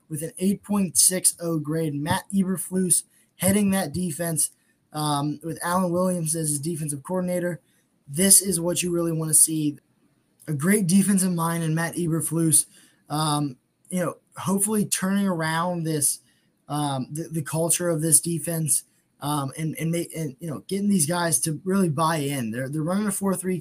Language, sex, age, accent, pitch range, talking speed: English, male, 20-39, American, 150-180 Hz, 165 wpm